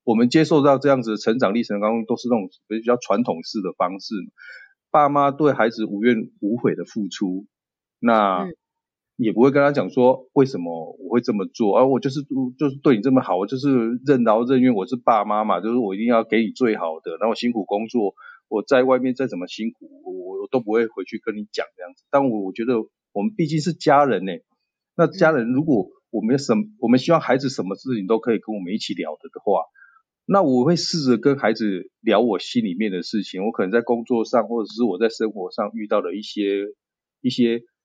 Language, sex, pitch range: Chinese, male, 110-145 Hz